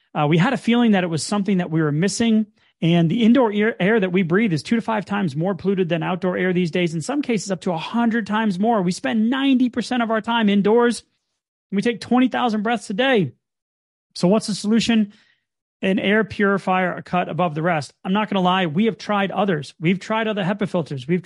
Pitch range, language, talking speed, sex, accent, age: 175-215 Hz, English, 225 wpm, male, American, 30-49